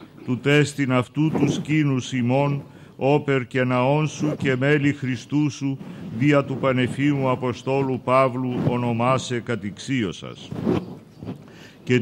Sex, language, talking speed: male, Greek, 110 wpm